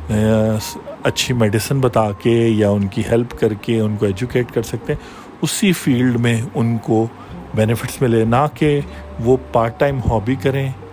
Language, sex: Urdu, male